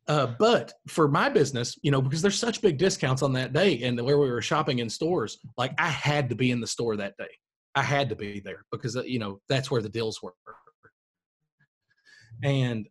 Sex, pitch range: male, 115-150 Hz